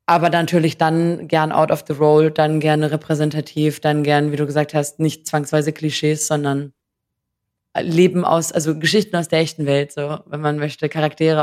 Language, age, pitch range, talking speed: German, 20-39, 150-160 Hz, 185 wpm